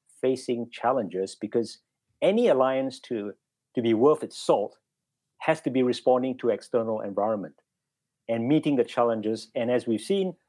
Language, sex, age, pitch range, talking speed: English, male, 50-69, 115-155 Hz, 150 wpm